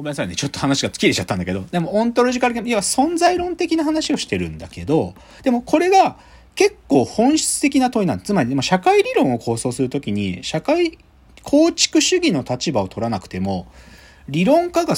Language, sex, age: Japanese, male, 40-59